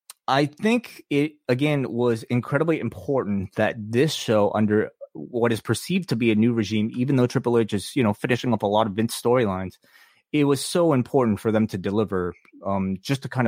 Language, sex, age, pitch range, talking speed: English, male, 20-39, 105-125 Hz, 200 wpm